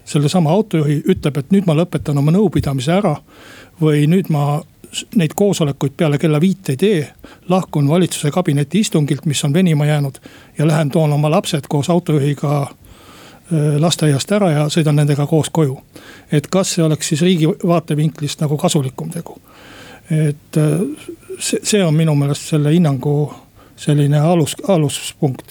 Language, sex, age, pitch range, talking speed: Finnish, male, 60-79, 145-170 Hz, 145 wpm